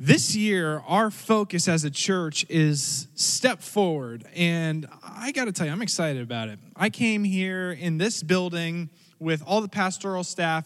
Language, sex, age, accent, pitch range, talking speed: English, male, 20-39, American, 165-220 Hz, 175 wpm